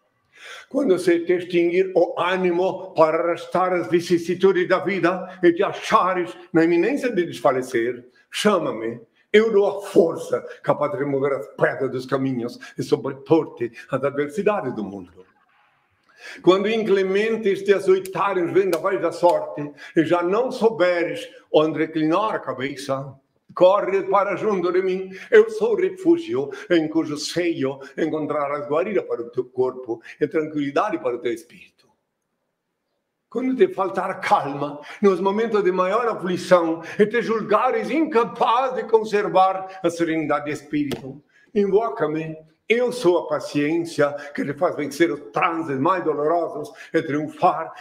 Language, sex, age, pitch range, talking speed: Portuguese, male, 60-79, 150-210 Hz, 140 wpm